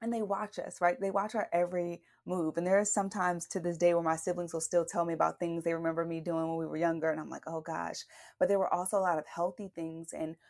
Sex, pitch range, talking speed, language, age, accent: female, 165-200 Hz, 280 wpm, English, 30-49, American